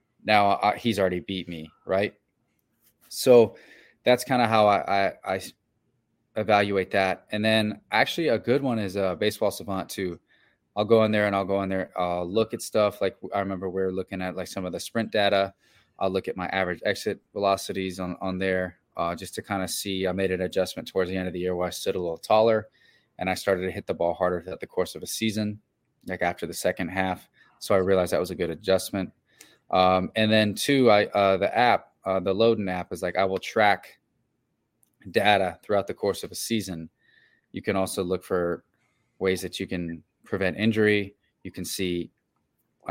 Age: 20-39